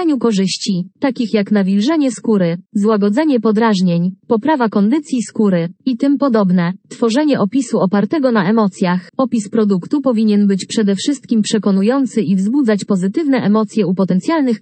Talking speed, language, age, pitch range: 130 wpm, Polish, 20-39, 200-245 Hz